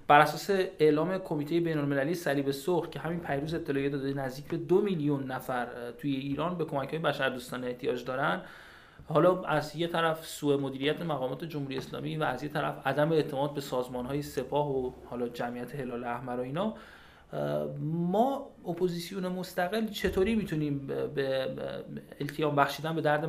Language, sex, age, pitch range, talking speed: Persian, male, 30-49, 130-160 Hz, 155 wpm